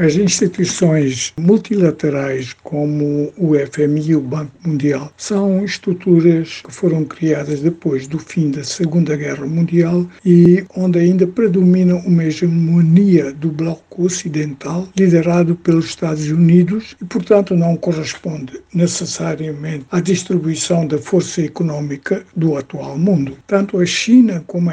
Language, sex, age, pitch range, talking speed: Portuguese, male, 60-79, 160-195 Hz, 125 wpm